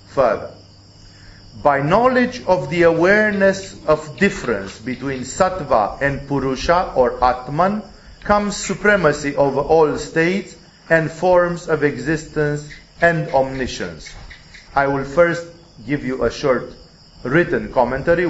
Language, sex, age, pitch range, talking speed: English, male, 40-59, 130-180 Hz, 110 wpm